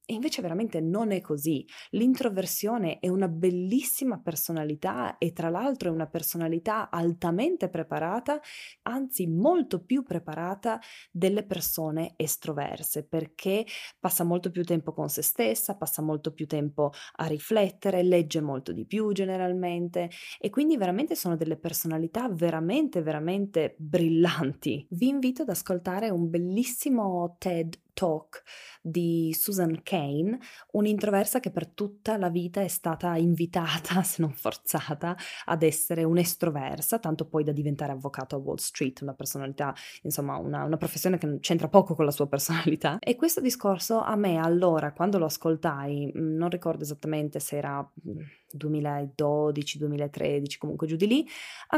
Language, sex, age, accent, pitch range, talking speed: Italian, female, 20-39, native, 155-195 Hz, 140 wpm